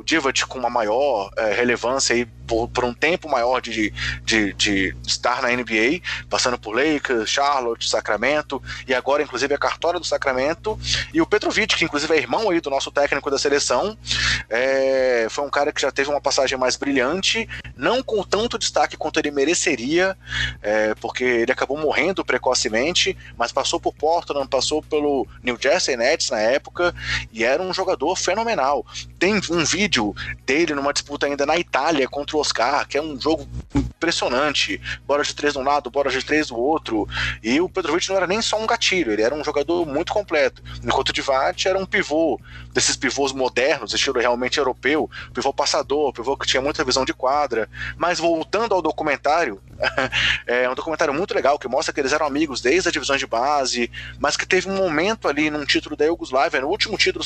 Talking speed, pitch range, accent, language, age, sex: 190 wpm, 125-175 Hz, Brazilian, Portuguese, 20-39, male